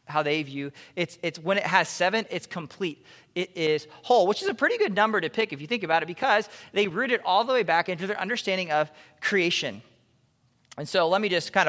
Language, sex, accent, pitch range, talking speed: English, male, American, 140-195 Hz, 235 wpm